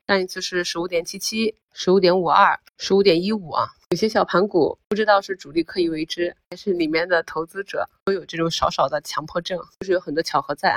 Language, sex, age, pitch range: Chinese, female, 30-49, 170-205 Hz